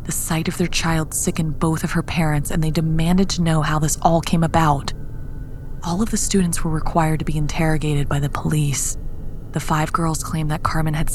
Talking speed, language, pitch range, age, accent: 210 wpm, English, 140-175 Hz, 20-39, American